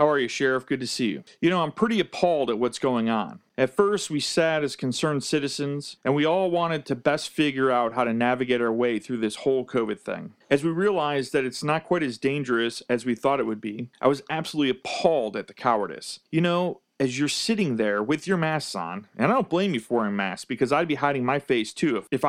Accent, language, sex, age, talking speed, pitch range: American, English, male, 40-59, 245 wpm, 125-165 Hz